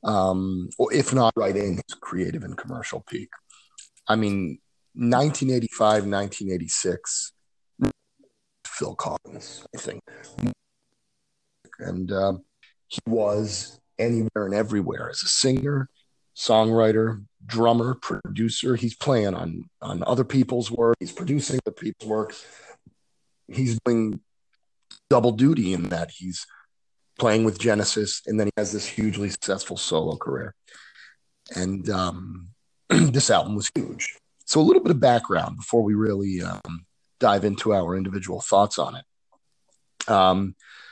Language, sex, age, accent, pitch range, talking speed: English, male, 40-59, American, 100-115 Hz, 125 wpm